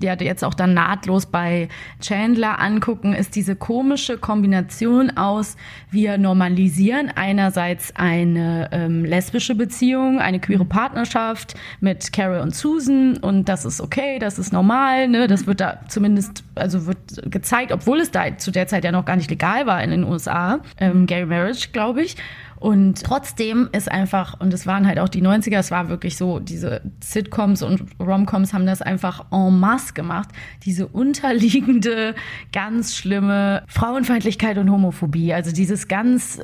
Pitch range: 185-220 Hz